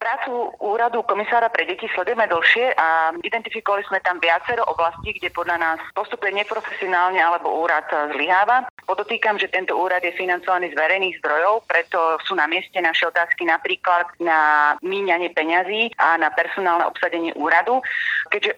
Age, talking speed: 30-49, 150 wpm